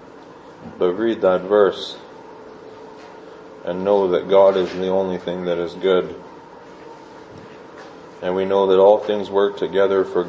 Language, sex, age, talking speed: English, male, 40-59, 140 wpm